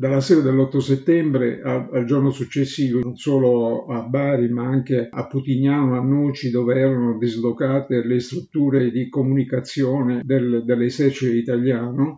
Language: Italian